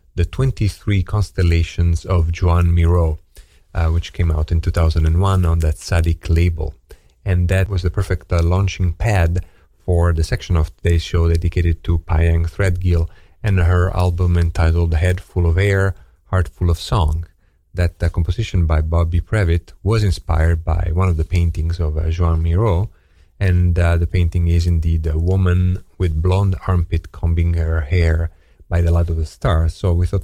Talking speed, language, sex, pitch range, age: 170 wpm, English, male, 85-95 Hz, 40-59